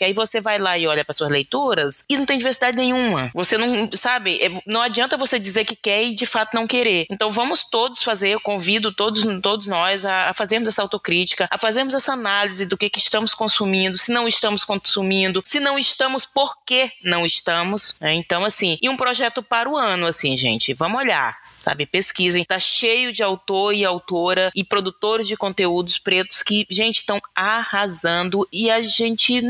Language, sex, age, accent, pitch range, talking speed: Portuguese, female, 20-39, Brazilian, 170-230 Hz, 195 wpm